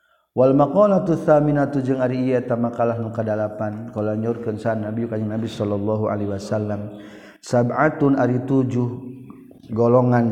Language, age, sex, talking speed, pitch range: Indonesian, 40-59, male, 100 wpm, 110-125 Hz